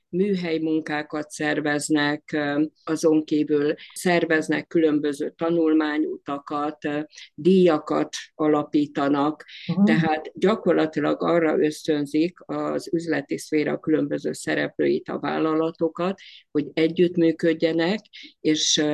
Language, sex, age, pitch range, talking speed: Hungarian, female, 50-69, 145-165 Hz, 75 wpm